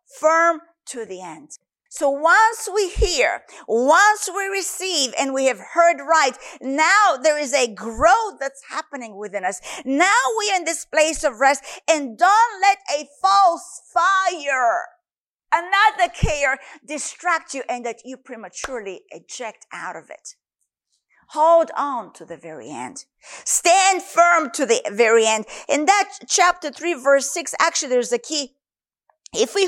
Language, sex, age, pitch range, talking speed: English, female, 50-69, 275-385 Hz, 150 wpm